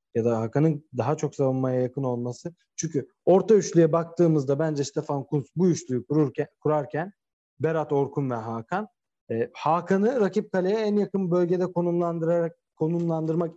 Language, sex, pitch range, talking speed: Turkish, male, 120-170 Hz, 140 wpm